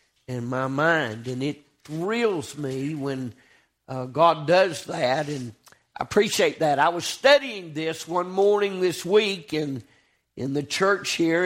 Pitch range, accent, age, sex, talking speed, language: 145-200 Hz, American, 50-69, male, 150 wpm, English